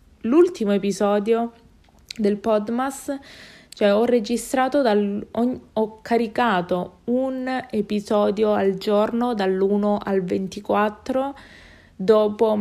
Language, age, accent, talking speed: Italian, 20-39, native, 80 wpm